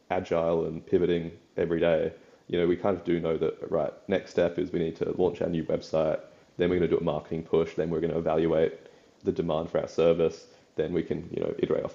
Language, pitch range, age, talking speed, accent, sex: English, 85-105 Hz, 20-39, 245 wpm, Australian, male